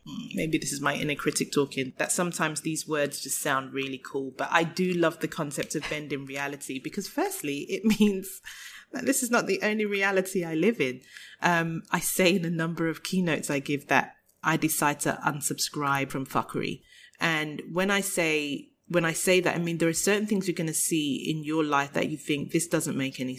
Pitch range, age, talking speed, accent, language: 145-180 Hz, 30-49, 215 wpm, British, English